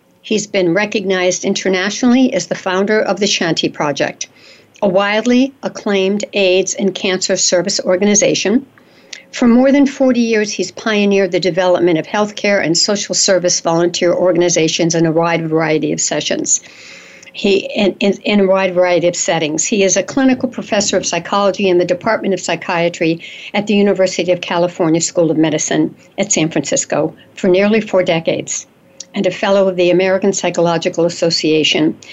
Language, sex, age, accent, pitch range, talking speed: English, female, 60-79, American, 170-205 Hz, 155 wpm